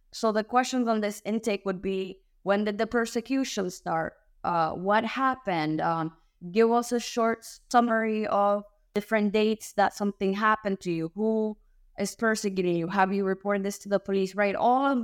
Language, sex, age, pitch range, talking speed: English, female, 20-39, 185-215 Hz, 175 wpm